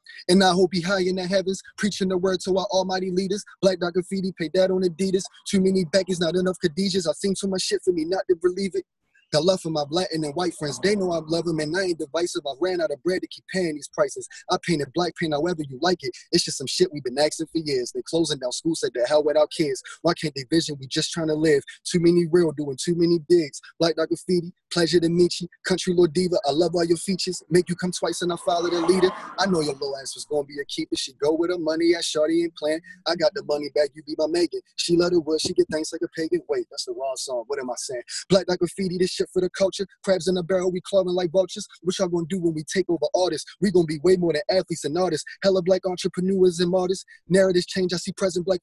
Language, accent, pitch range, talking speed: English, American, 160-185 Hz, 280 wpm